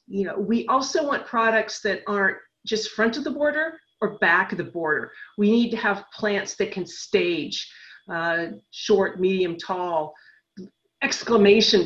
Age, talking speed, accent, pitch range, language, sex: 40-59, 155 wpm, American, 185-240 Hz, English, female